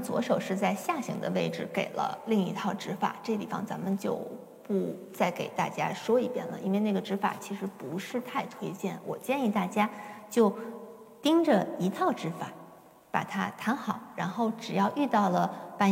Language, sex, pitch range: Chinese, female, 190-225 Hz